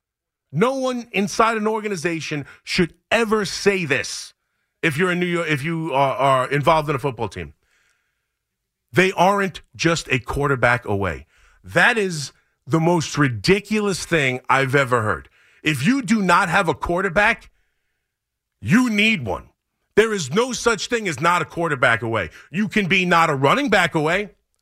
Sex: male